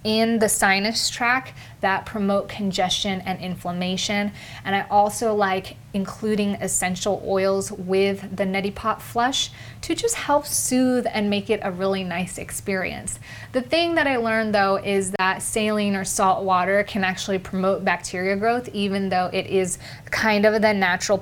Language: English